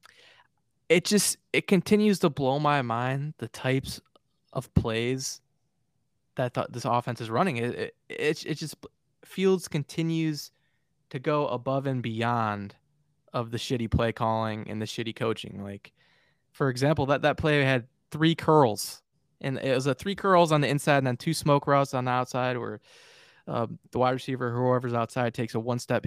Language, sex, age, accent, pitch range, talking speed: English, male, 20-39, American, 120-155 Hz, 175 wpm